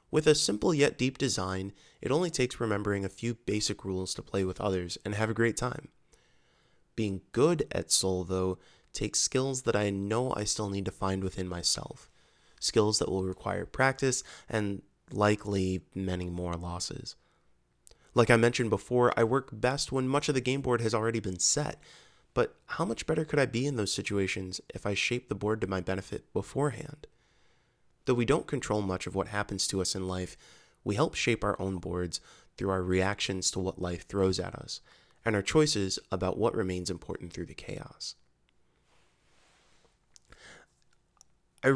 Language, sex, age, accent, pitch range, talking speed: English, male, 20-39, American, 95-120 Hz, 180 wpm